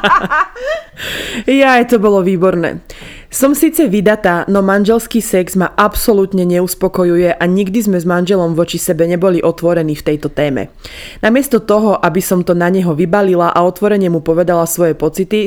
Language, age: Slovak, 20-39